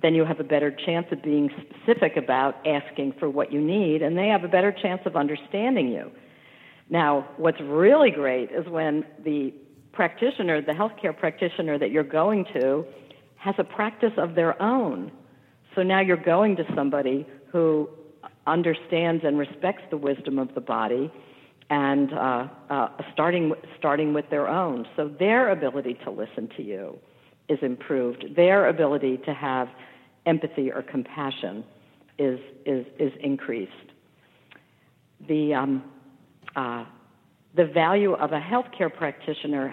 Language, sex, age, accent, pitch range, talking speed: English, female, 50-69, American, 140-170 Hz, 150 wpm